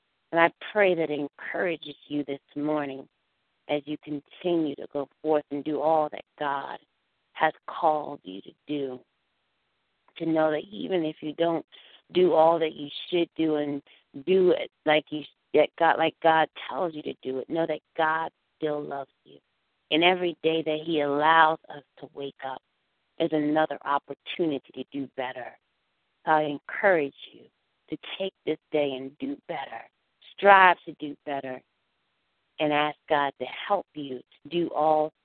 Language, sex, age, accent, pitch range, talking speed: English, female, 40-59, American, 145-170 Hz, 160 wpm